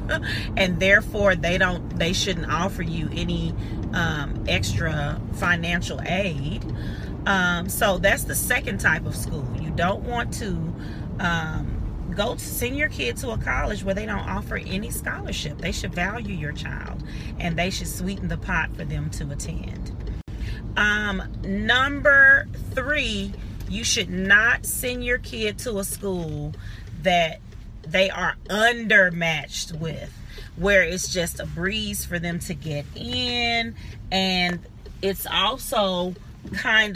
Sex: female